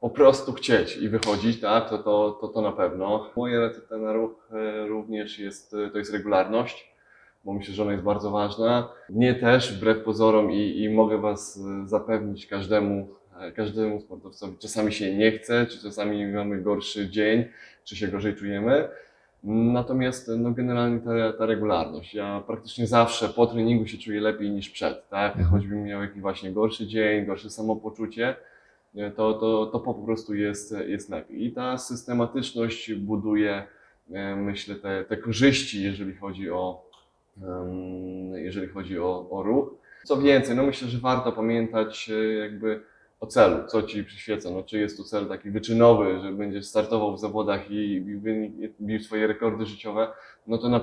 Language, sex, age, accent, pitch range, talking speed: Polish, male, 20-39, native, 100-115 Hz, 165 wpm